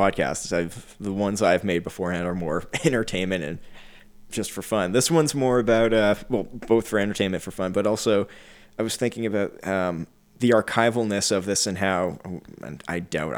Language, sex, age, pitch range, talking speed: English, male, 20-39, 95-115 Hz, 190 wpm